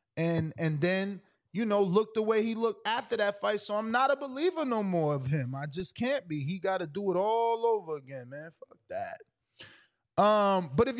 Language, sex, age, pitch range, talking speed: English, male, 20-39, 170-220 Hz, 220 wpm